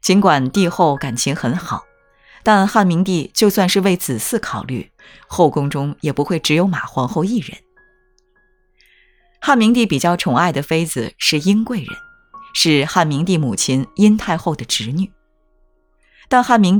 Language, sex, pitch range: Chinese, female, 135-200 Hz